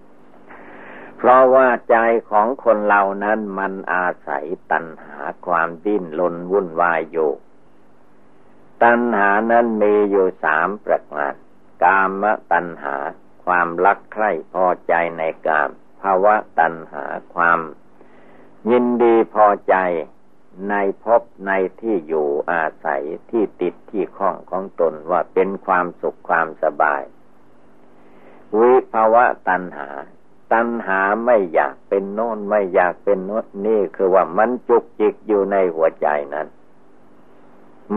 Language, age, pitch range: Thai, 60-79, 85-115 Hz